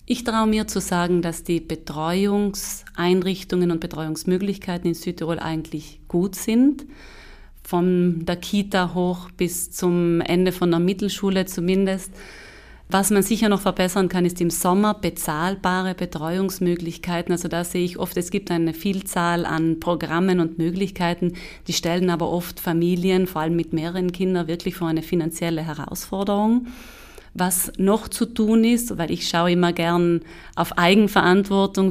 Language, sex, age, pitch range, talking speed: German, female, 30-49, 170-195 Hz, 145 wpm